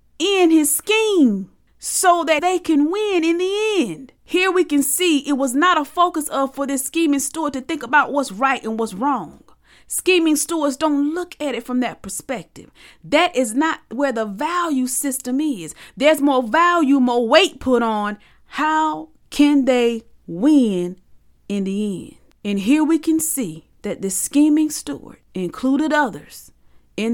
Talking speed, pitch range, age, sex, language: 170 wpm, 230-305 Hz, 40-59, female, English